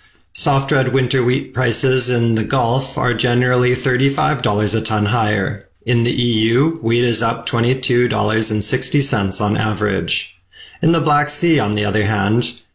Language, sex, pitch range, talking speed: English, male, 105-130 Hz, 145 wpm